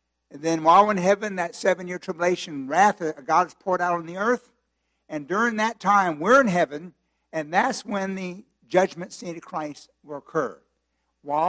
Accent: American